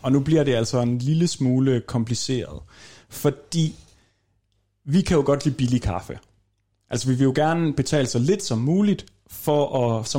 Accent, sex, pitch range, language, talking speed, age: native, male, 115-150 Hz, Danish, 170 wpm, 30-49